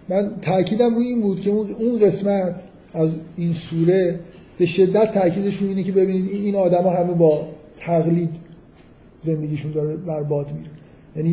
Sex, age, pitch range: male, 50-69, 155-185 Hz